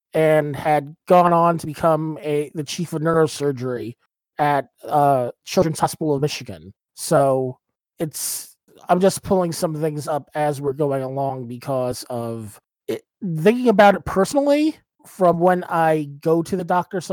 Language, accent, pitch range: English, American, 145-185 Hz